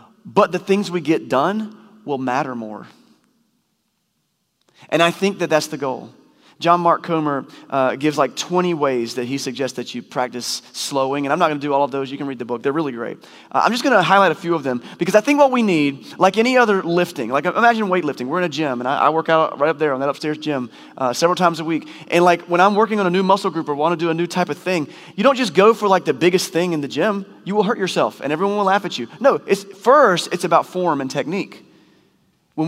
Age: 30-49